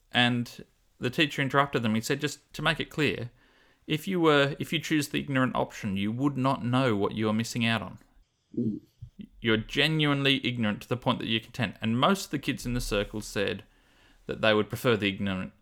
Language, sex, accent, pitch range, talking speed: English, male, Australian, 105-130 Hz, 210 wpm